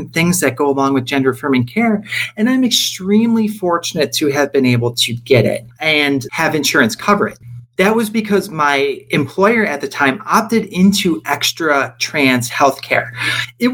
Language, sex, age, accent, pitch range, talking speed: English, male, 40-59, American, 130-195 Hz, 170 wpm